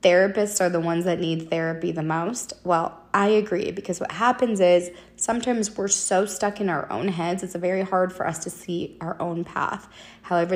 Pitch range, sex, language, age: 175-220 Hz, female, English, 20-39